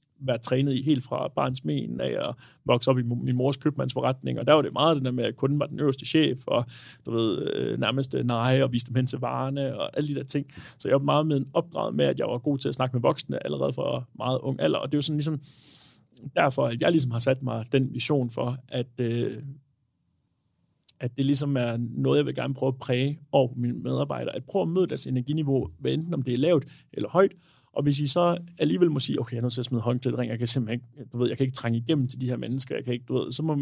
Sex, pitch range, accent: male, 120-145 Hz, Danish